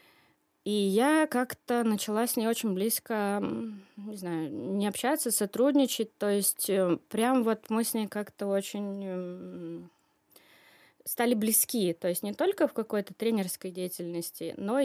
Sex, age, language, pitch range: female, 20-39, Russian, 185-235 Hz